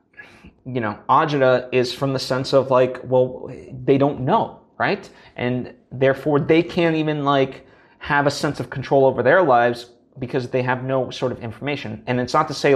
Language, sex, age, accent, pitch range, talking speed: English, male, 30-49, American, 125-140 Hz, 190 wpm